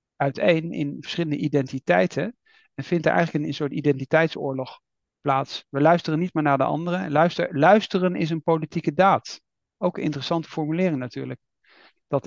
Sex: male